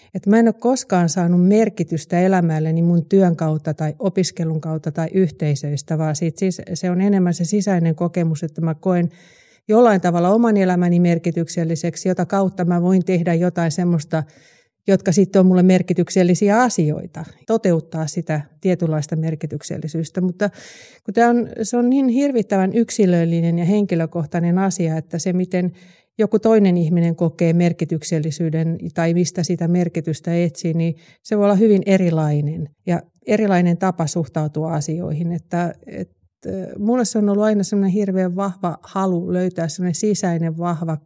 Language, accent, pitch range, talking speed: Finnish, native, 165-195 Hz, 145 wpm